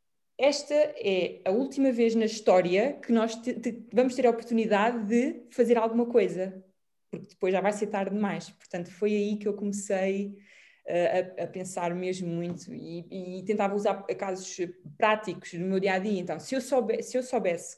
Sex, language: female, Portuguese